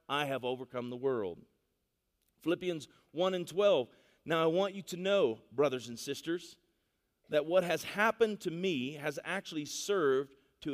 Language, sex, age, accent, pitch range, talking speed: English, male, 40-59, American, 130-190 Hz, 155 wpm